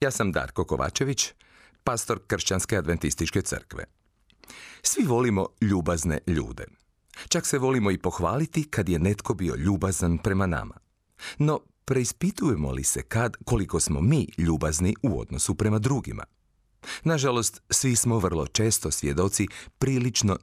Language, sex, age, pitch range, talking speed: Croatian, male, 40-59, 85-120 Hz, 130 wpm